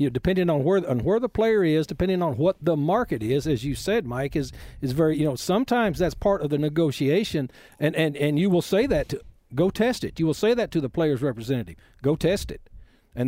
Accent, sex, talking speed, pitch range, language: American, male, 245 wpm, 135-180 Hz, English